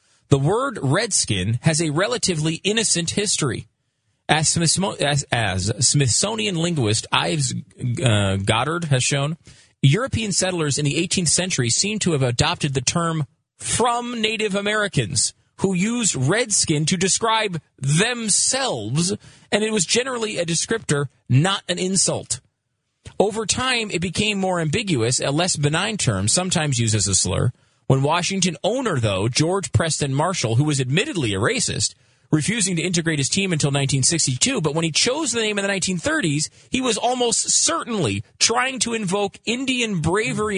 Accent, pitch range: American, 130-200 Hz